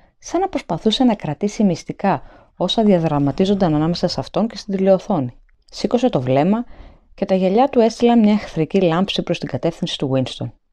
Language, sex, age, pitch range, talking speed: Greek, female, 20-39, 145-200 Hz, 170 wpm